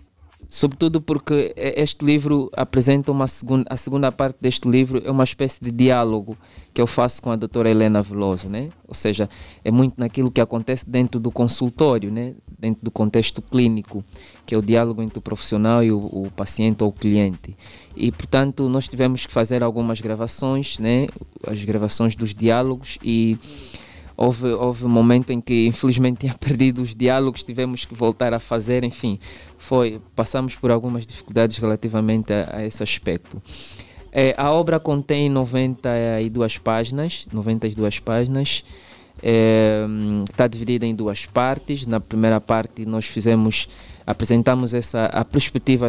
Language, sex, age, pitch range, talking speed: Portuguese, male, 20-39, 110-130 Hz, 155 wpm